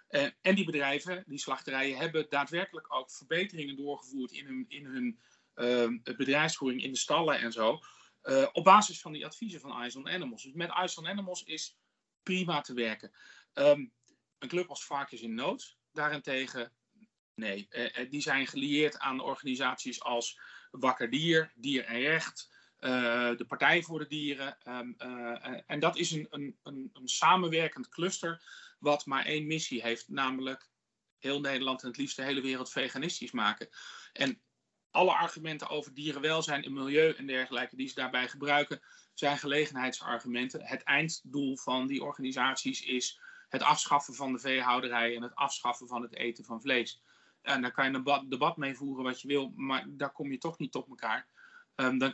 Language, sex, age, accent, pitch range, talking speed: Dutch, male, 40-59, Dutch, 130-165 Hz, 170 wpm